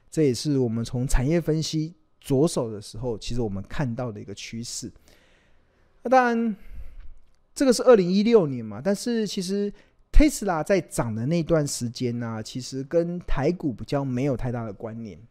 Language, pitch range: Chinese, 120-170 Hz